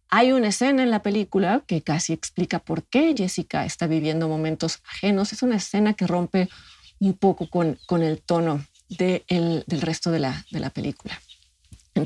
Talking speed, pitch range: 185 wpm, 165-205 Hz